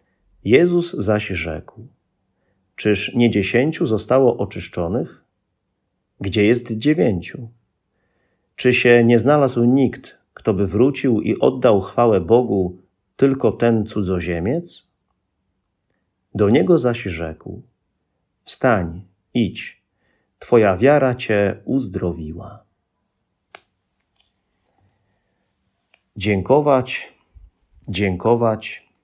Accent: native